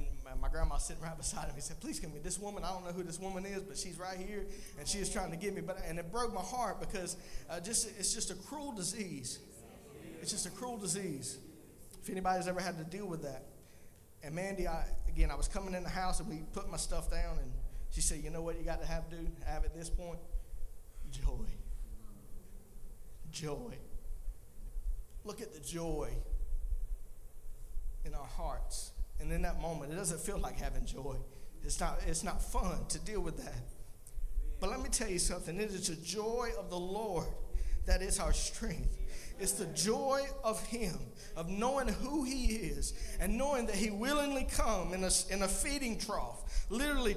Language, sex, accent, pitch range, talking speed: English, male, American, 165-245 Hz, 200 wpm